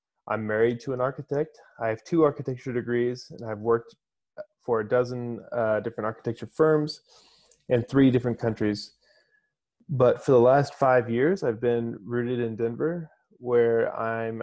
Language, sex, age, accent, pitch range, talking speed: English, male, 20-39, American, 115-130 Hz, 155 wpm